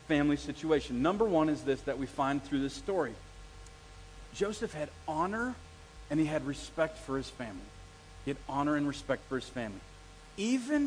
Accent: American